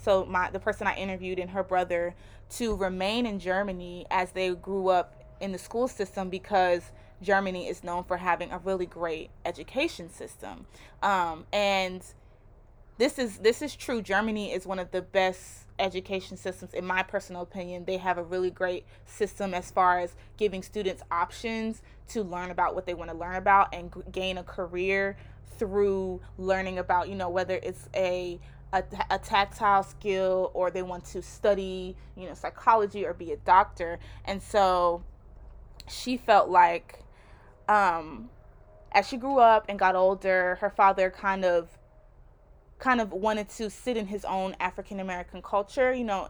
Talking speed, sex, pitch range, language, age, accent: 165 wpm, female, 180-200 Hz, English, 20-39, American